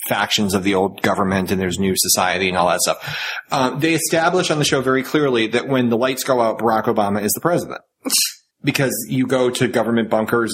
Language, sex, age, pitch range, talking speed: English, male, 30-49, 110-145 Hz, 215 wpm